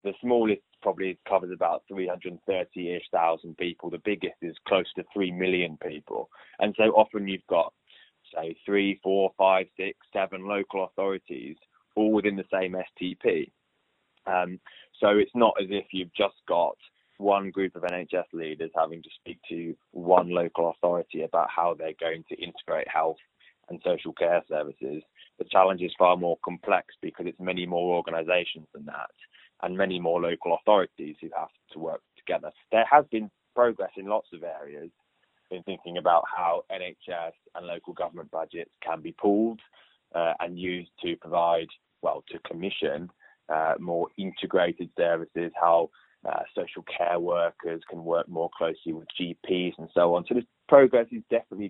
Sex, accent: male, British